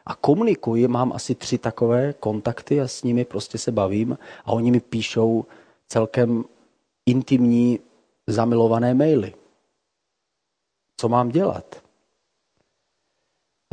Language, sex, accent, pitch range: Czech, male, native, 110-130 Hz